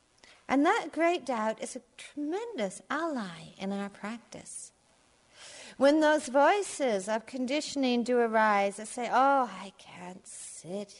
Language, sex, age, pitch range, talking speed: English, female, 50-69, 200-260 Hz, 130 wpm